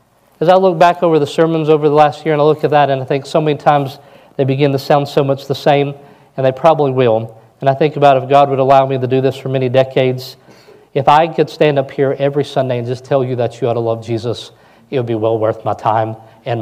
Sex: male